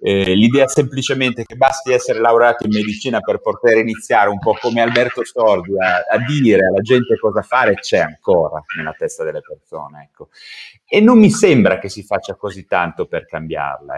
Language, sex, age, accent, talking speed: Italian, male, 30-49, native, 180 wpm